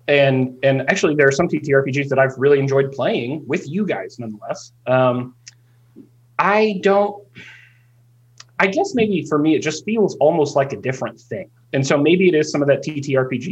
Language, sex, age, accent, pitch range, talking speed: English, male, 30-49, American, 120-145 Hz, 180 wpm